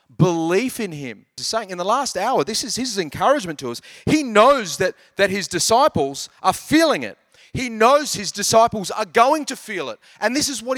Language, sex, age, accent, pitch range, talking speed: English, male, 30-49, Australian, 165-265 Hz, 205 wpm